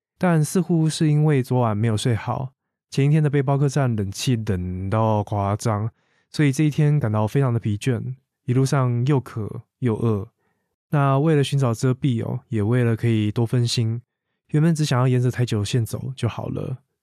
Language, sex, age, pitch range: Chinese, male, 20-39, 110-140 Hz